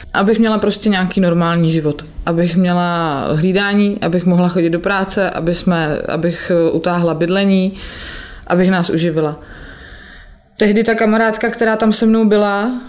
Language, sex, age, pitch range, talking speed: Czech, female, 20-39, 175-205 Hz, 140 wpm